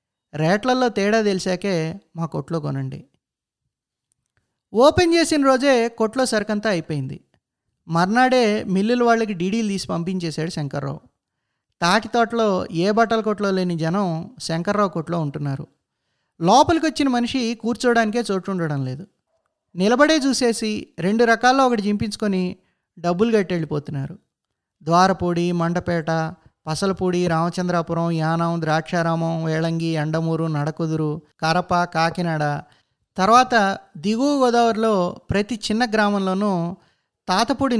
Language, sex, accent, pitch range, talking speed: Telugu, male, native, 165-220 Hz, 95 wpm